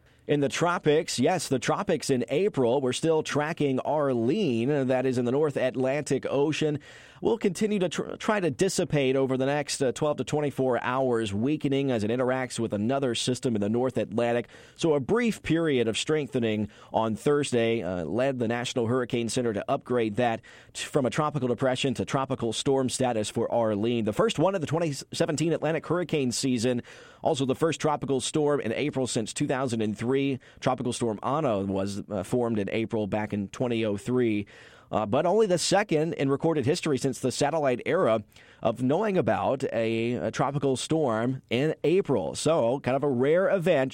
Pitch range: 115-155 Hz